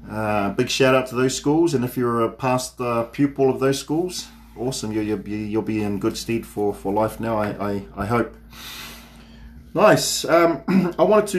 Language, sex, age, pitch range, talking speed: English, male, 30-49, 115-140 Hz, 190 wpm